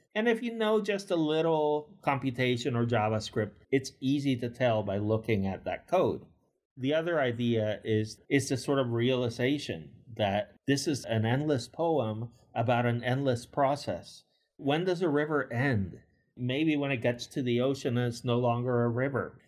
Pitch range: 120-155 Hz